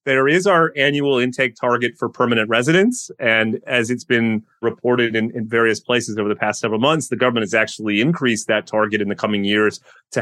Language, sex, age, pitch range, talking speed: English, male, 30-49, 110-130 Hz, 205 wpm